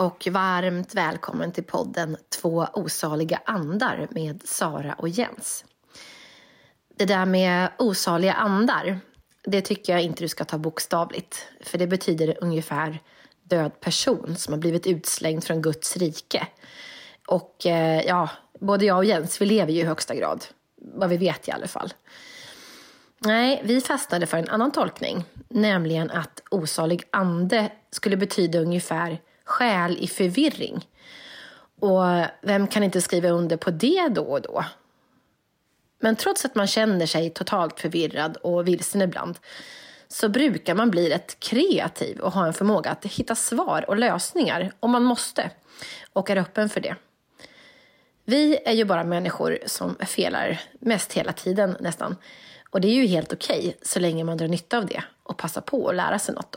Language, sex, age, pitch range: Swedish, female, 30-49, 170-215 Hz